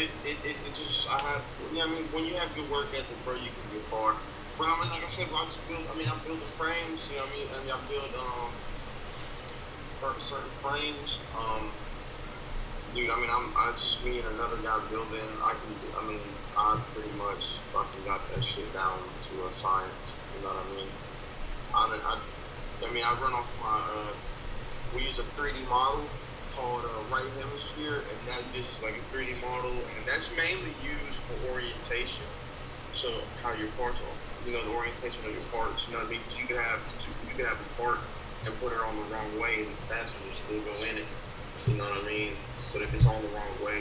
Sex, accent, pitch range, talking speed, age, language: male, American, 110-135 Hz, 230 wpm, 20-39, English